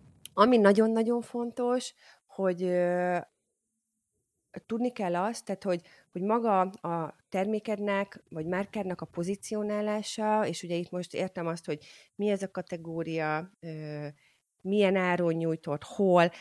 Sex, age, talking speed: female, 30-49, 125 wpm